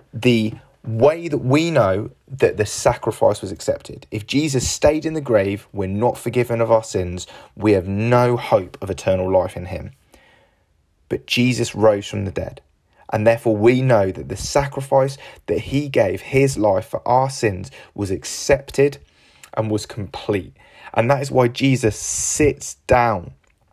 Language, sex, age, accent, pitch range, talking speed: English, male, 20-39, British, 105-130 Hz, 160 wpm